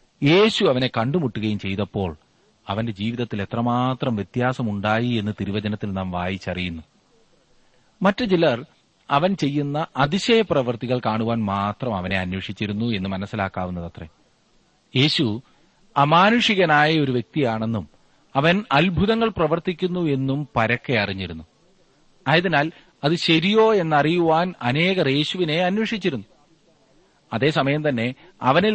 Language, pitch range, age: Malayalam, 115-165 Hz, 40-59